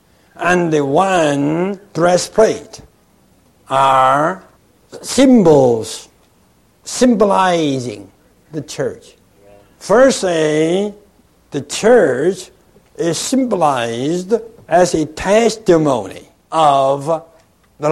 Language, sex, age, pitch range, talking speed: English, male, 60-79, 140-205 Hz, 65 wpm